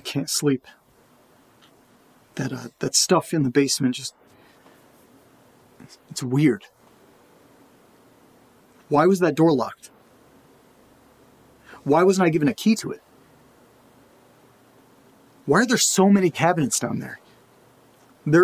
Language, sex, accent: English, male, American